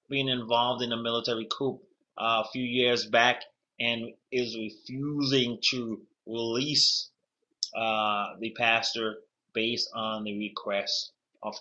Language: English